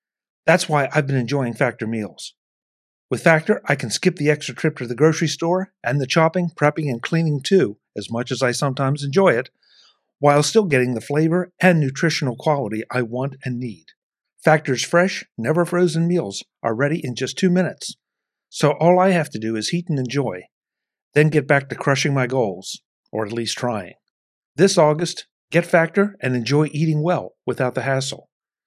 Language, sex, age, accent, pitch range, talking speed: English, male, 50-69, American, 125-165 Hz, 180 wpm